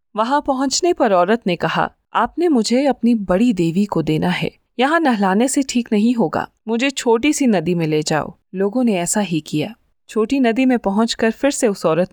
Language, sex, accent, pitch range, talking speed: Hindi, female, native, 180-240 Hz, 200 wpm